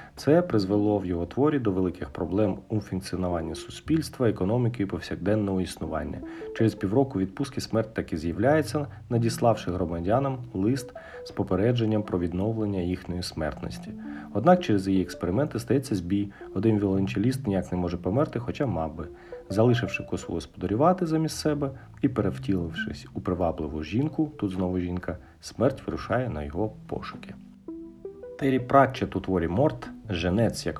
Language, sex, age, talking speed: Ukrainian, male, 40-59, 135 wpm